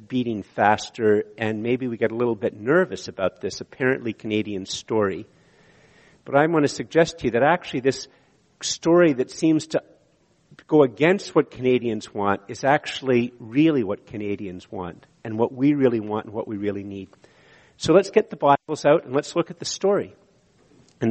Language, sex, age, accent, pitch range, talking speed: English, male, 50-69, American, 115-160 Hz, 180 wpm